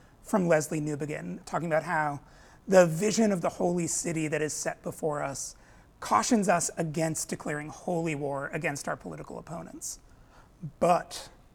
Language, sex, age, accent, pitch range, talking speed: English, male, 30-49, American, 155-200 Hz, 145 wpm